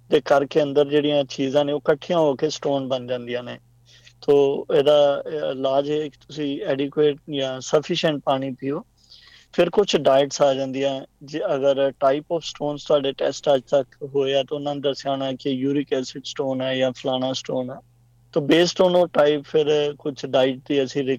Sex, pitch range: male, 130-145 Hz